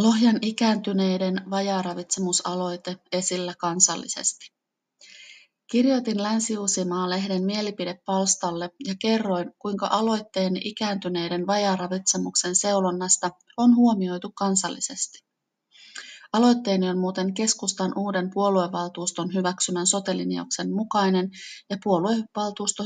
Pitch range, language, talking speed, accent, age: 180-215 Hz, Finnish, 75 wpm, native, 30-49